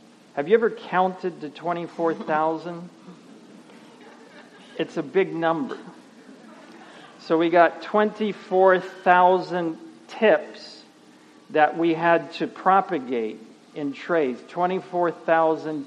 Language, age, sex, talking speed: English, 50-69, male, 85 wpm